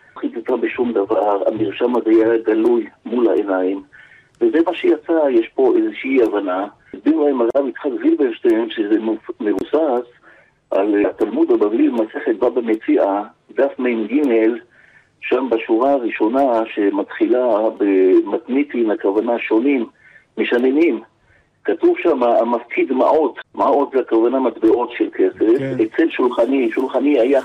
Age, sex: 50-69, male